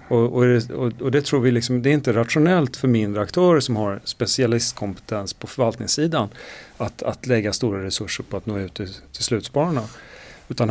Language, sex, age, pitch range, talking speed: Swedish, male, 40-59, 105-135 Hz, 180 wpm